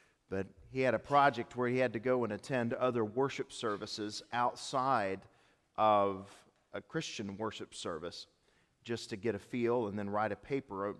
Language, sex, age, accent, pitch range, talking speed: English, male, 40-59, American, 105-130 Hz, 175 wpm